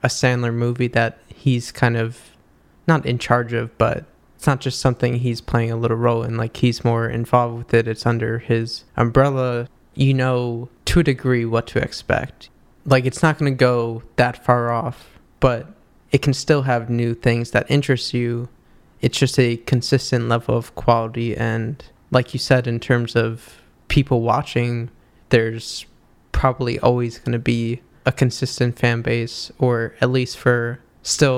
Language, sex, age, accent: English, male, 20-39, American